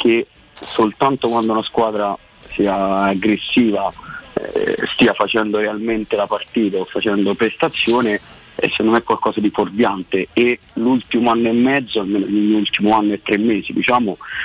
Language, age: Italian, 30-49